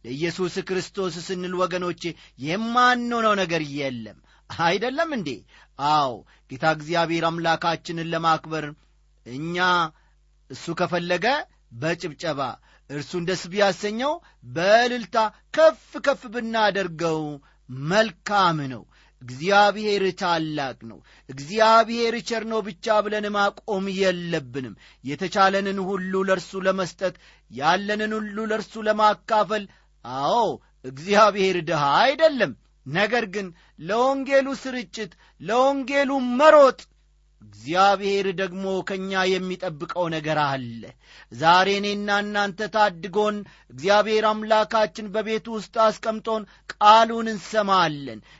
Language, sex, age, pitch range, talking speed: Amharic, male, 40-59, 165-220 Hz, 90 wpm